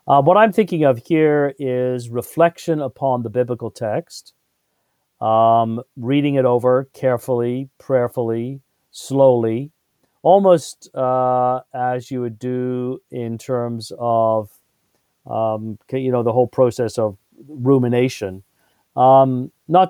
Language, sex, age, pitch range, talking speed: English, male, 40-59, 115-135 Hz, 115 wpm